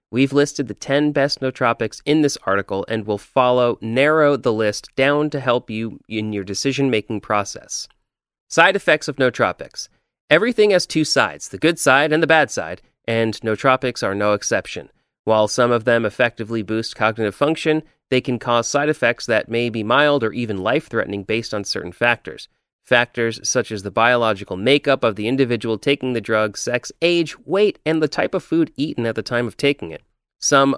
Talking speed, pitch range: 185 wpm, 110-145 Hz